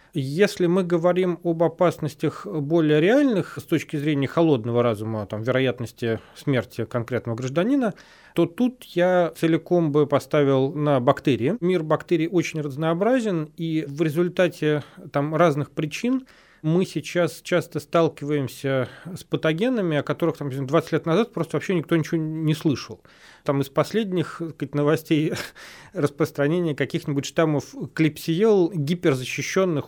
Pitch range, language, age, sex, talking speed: 140-170 Hz, Russian, 30-49, male, 120 wpm